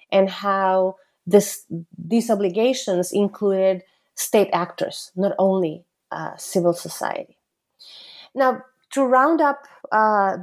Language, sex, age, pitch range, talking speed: English, female, 30-49, 190-225 Hz, 100 wpm